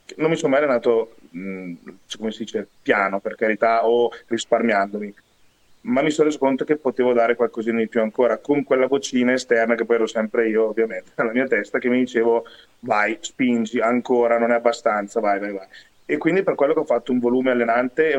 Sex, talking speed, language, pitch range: male, 200 wpm, Italian, 115-145 Hz